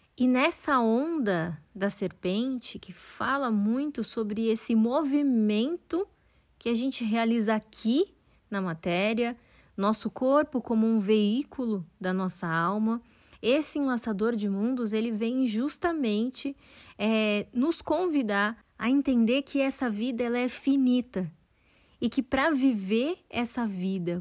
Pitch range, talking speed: 205-255 Hz, 115 wpm